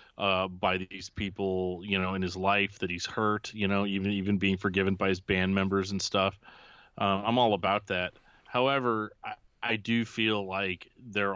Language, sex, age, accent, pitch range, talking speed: English, male, 30-49, American, 95-105 Hz, 190 wpm